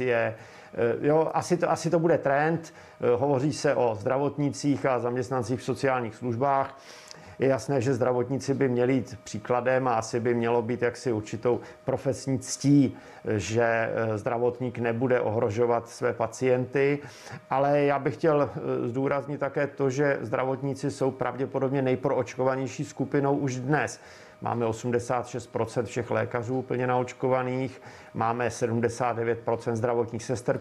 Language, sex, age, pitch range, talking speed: Czech, male, 50-69, 120-140 Hz, 125 wpm